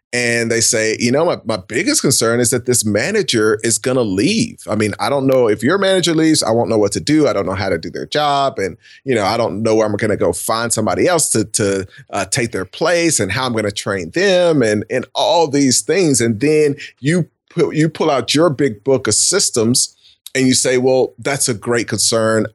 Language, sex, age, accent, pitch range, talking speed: English, male, 30-49, American, 110-140 Hz, 245 wpm